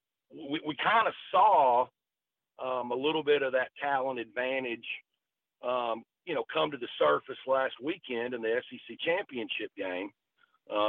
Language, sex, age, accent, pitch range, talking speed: English, male, 50-69, American, 110-170 Hz, 150 wpm